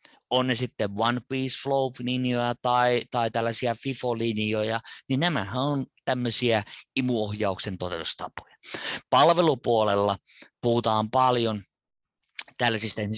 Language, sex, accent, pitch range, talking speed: Finnish, male, native, 110-130 Hz, 90 wpm